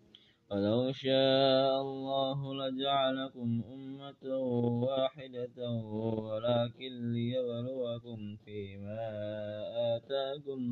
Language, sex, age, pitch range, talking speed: Indonesian, male, 20-39, 110-130 Hz, 55 wpm